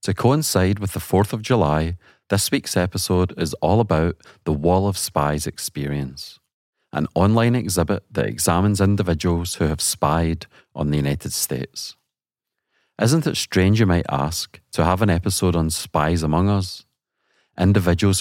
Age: 40-59